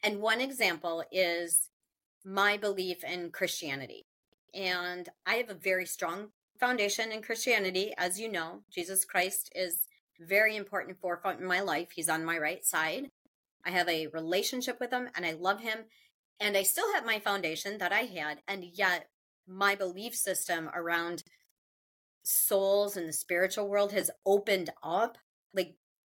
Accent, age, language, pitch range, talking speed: American, 30-49, English, 180-230 Hz, 155 wpm